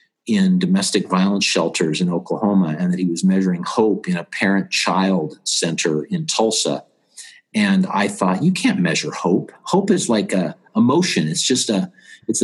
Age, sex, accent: 50-69, male, American